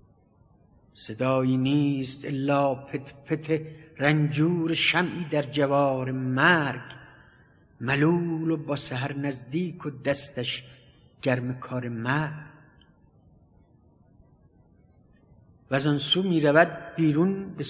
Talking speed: 85 wpm